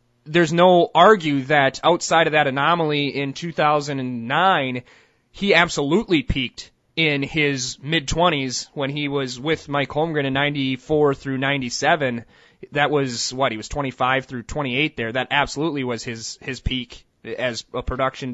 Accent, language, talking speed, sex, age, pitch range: American, English, 145 wpm, male, 30-49, 130-165 Hz